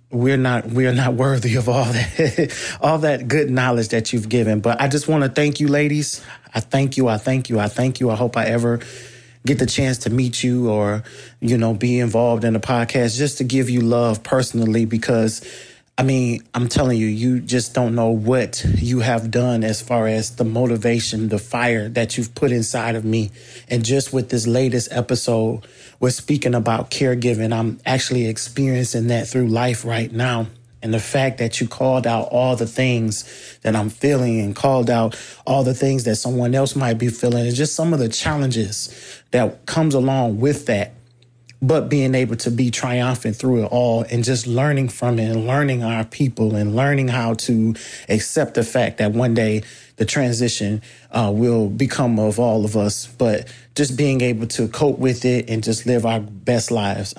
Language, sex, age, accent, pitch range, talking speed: English, male, 30-49, American, 115-130 Hz, 195 wpm